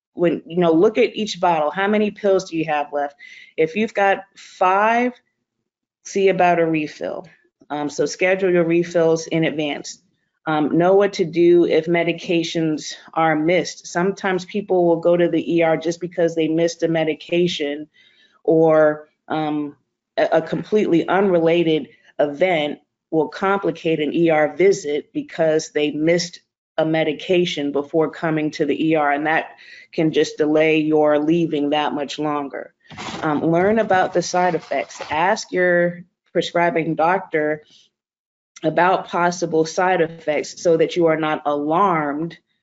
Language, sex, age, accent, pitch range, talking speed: English, female, 30-49, American, 155-175 Hz, 145 wpm